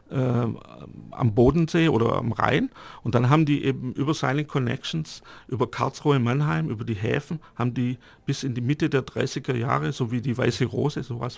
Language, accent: English, German